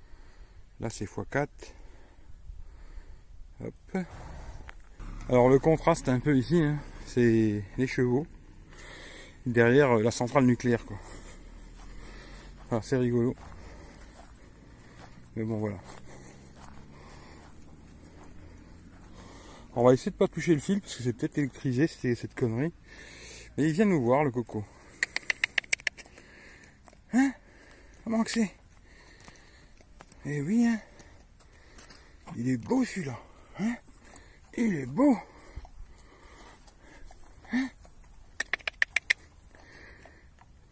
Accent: French